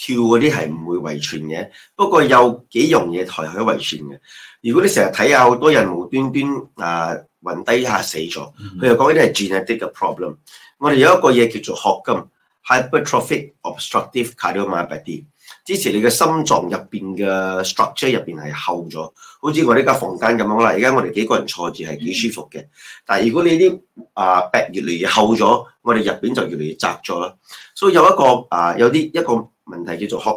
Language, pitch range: Chinese, 90-130 Hz